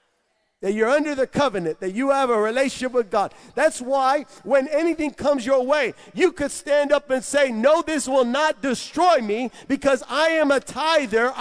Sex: male